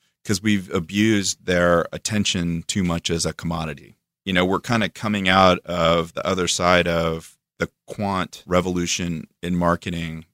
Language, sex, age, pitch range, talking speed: English, male, 30-49, 85-95 Hz, 155 wpm